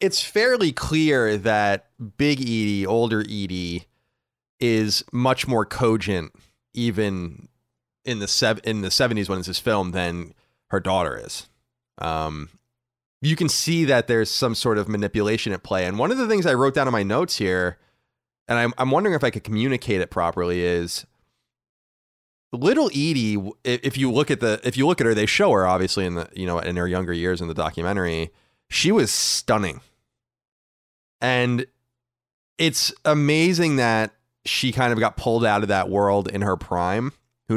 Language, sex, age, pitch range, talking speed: English, male, 30-49, 95-130 Hz, 175 wpm